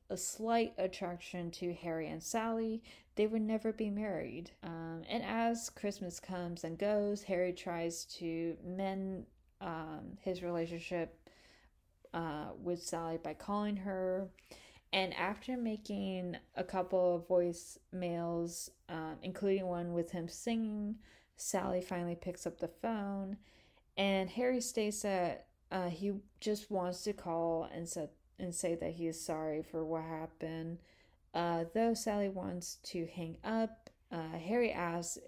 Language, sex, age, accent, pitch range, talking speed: English, female, 20-39, American, 165-195 Hz, 140 wpm